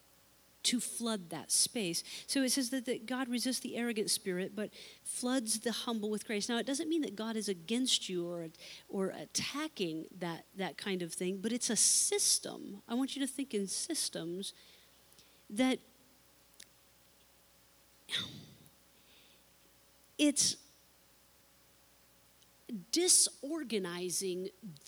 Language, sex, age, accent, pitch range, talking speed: English, female, 40-59, American, 180-235 Hz, 125 wpm